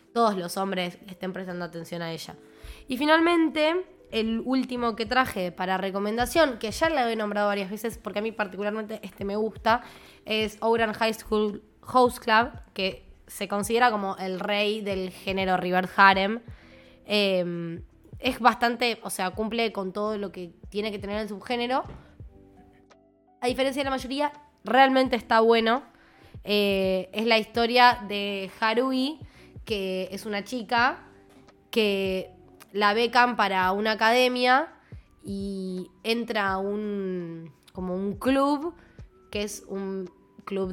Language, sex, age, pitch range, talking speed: Spanish, female, 20-39, 185-230 Hz, 140 wpm